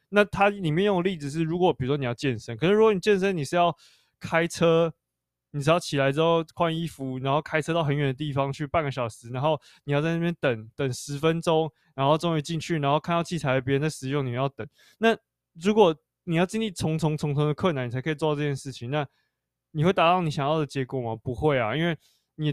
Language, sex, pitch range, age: Chinese, male, 130-165 Hz, 20-39